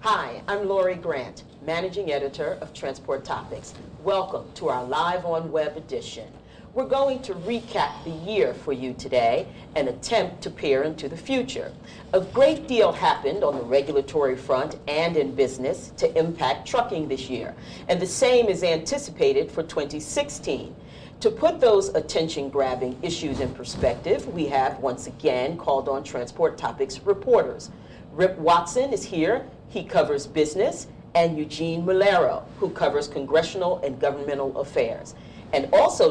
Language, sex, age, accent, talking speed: English, female, 40-59, American, 150 wpm